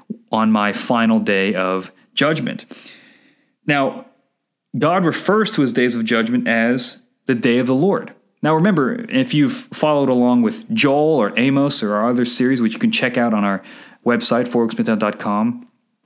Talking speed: 160 wpm